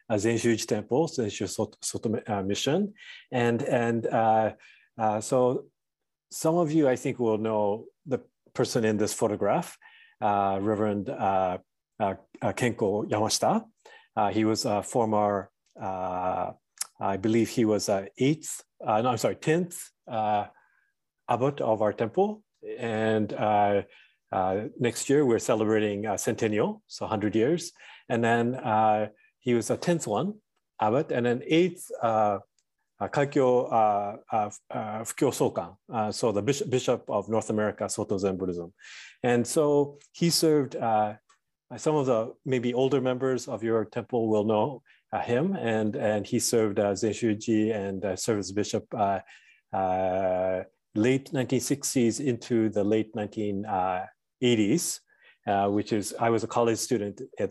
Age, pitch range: 30-49, 105-125 Hz